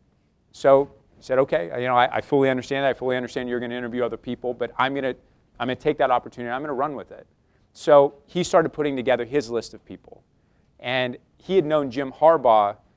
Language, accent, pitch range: English, American, 110-135 Hz